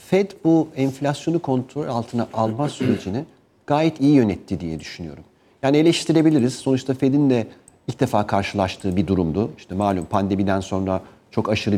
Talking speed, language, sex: 145 wpm, Turkish, male